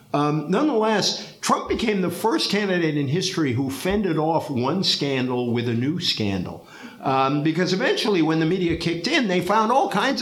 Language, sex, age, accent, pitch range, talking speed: English, male, 50-69, American, 120-175 Hz, 175 wpm